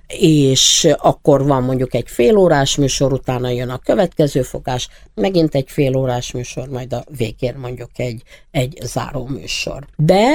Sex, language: female, Hungarian